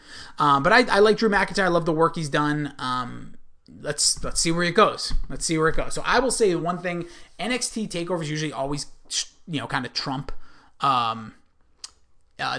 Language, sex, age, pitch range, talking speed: English, male, 30-49, 135-175 Hz, 200 wpm